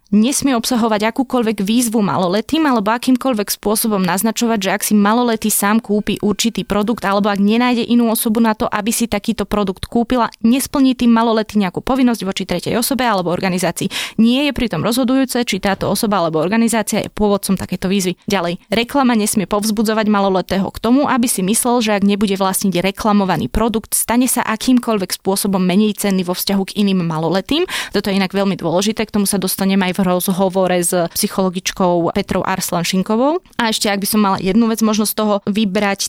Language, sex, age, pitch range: Slovak, female, 20-39, 195-230 Hz